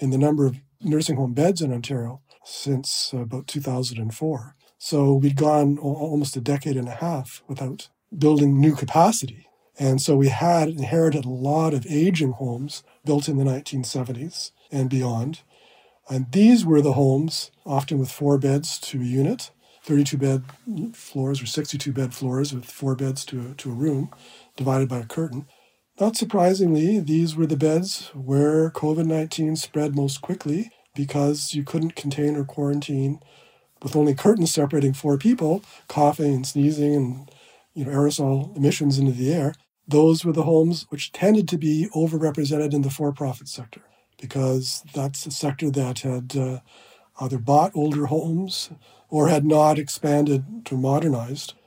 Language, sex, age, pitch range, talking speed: English, male, 40-59, 135-155 Hz, 155 wpm